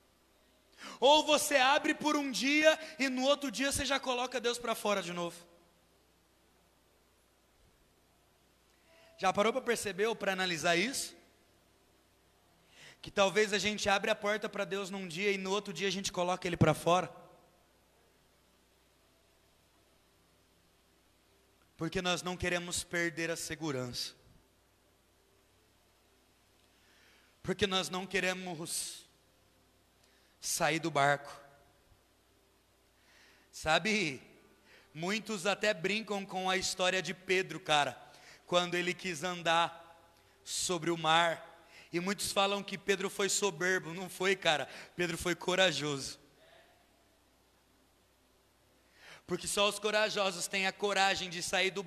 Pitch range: 155-205 Hz